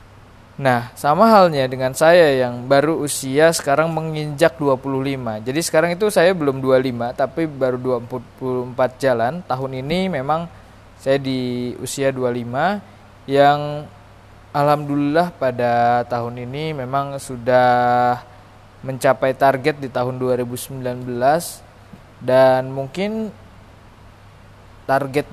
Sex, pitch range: male, 115-140 Hz